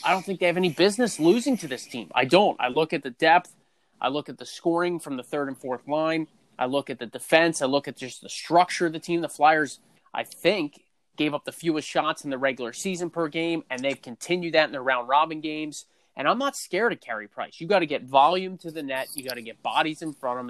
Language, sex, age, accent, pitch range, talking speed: English, male, 30-49, American, 135-170 Hz, 265 wpm